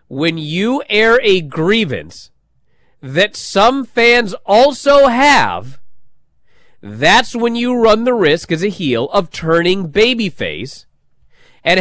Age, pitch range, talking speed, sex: 40-59, 130-200 Hz, 115 wpm, male